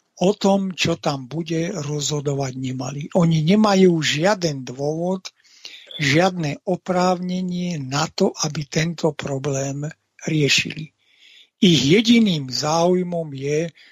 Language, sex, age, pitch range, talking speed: Slovak, male, 60-79, 150-180 Hz, 100 wpm